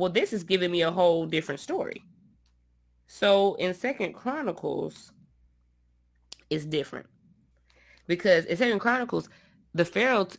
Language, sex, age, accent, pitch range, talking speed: English, female, 20-39, American, 155-190 Hz, 120 wpm